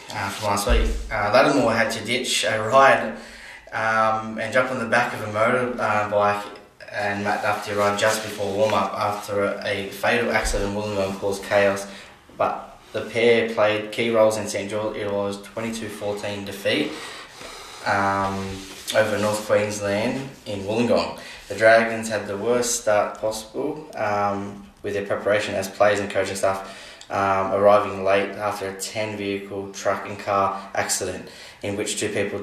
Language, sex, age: English, male, 10-29